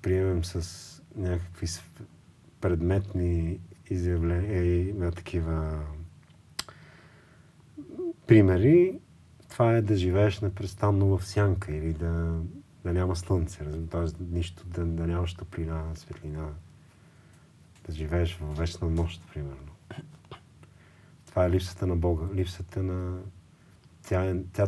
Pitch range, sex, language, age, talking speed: 85-100 Hz, male, Bulgarian, 40-59, 100 wpm